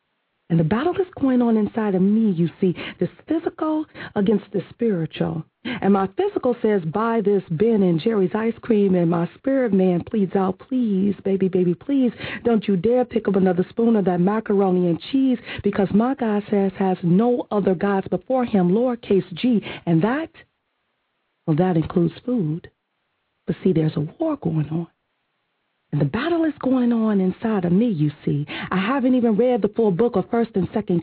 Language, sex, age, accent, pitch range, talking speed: English, female, 40-59, American, 180-235 Hz, 185 wpm